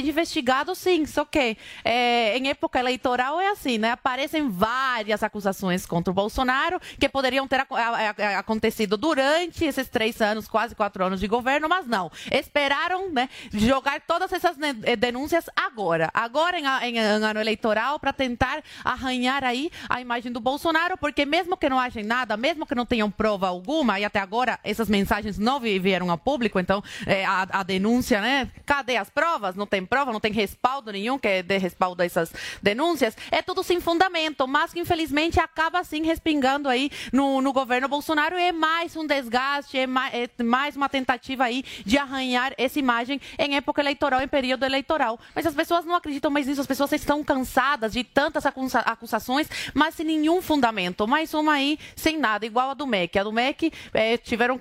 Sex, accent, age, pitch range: female, Brazilian, 20-39, 220-300 Hz